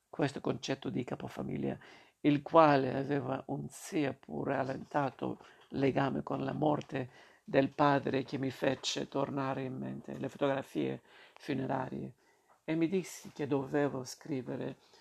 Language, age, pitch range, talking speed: Italian, 50-69, 130-150 Hz, 125 wpm